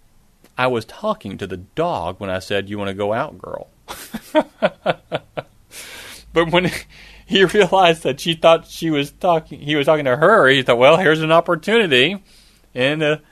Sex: male